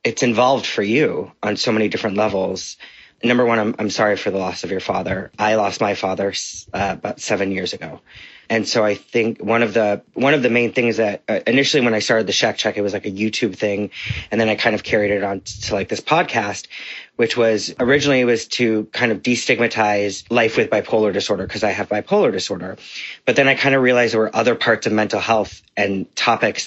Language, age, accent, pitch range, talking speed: English, 30-49, American, 100-115 Hz, 230 wpm